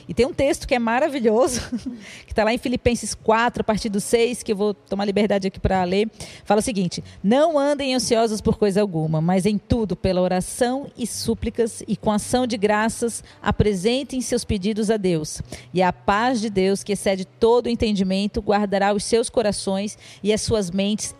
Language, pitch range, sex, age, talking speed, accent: Portuguese, 200-250 Hz, female, 40-59, 195 wpm, Brazilian